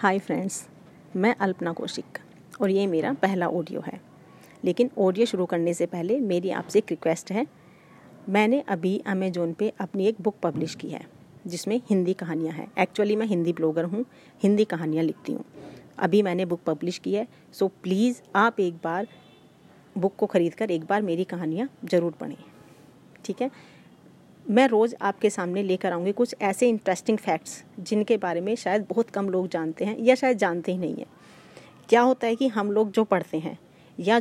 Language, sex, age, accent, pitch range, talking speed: Hindi, female, 30-49, native, 180-230 Hz, 180 wpm